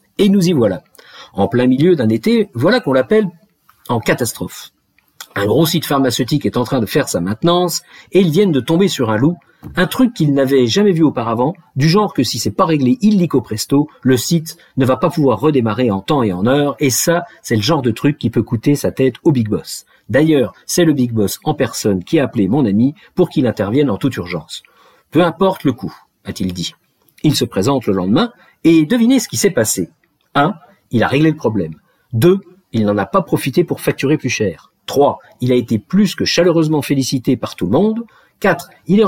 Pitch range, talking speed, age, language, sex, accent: 125-175 Hz, 220 wpm, 50-69, French, male, French